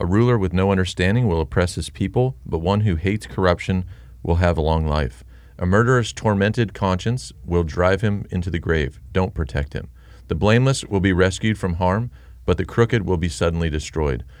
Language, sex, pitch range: English, male, 80-110 Hz